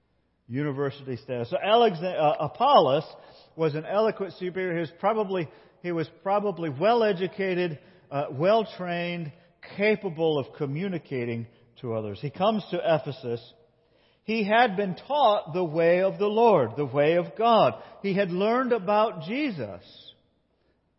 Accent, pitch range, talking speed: American, 140-210 Hz, 125 wpm